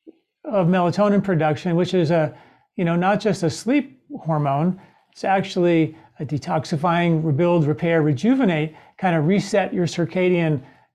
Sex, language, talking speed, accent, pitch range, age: male, English, 135 wpm, American, 160-190 Hz, 40-59